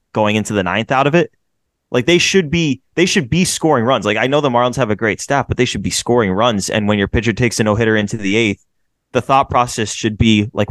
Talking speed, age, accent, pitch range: 270 wpm, 20-39, American, 110-140 Hz